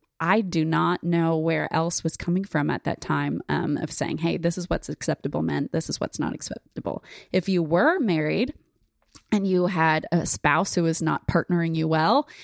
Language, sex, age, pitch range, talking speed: English, female, 20-39, 160-200 Hz, 200 wpm